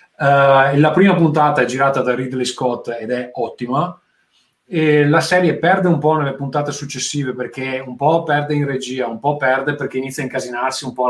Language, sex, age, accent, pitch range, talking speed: Italian, male, 30-49, native, 125-155 Hz, 195 wpm